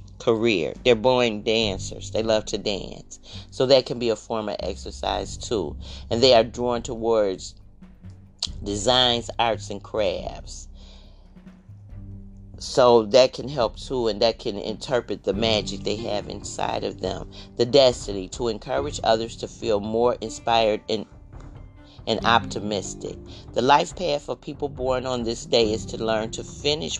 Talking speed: 150 wpm